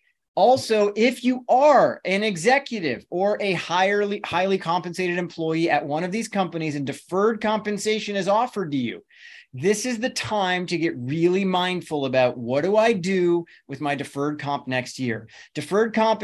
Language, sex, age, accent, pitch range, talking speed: English, male, 30-49, American, 165-215 Hz, 165 wpm